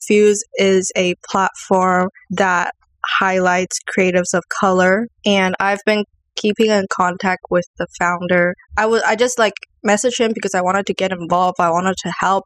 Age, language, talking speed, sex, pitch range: 10-29, English, 170 wpm, female, 180-225 Hz